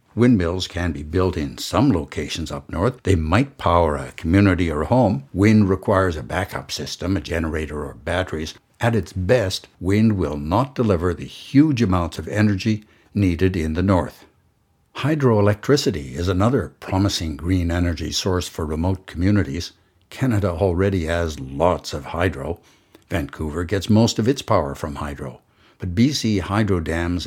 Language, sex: English, male